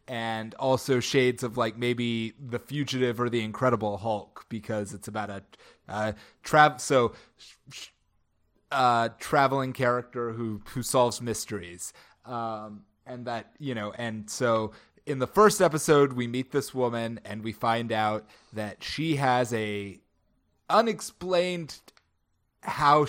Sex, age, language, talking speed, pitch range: male, 30-49, English, 140 wpm, 105-135 Hz